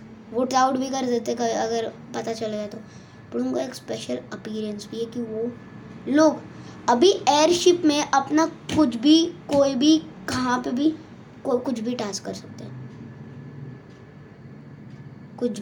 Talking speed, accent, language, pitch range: 140 wpm, native, Hindi, 215-280 Hz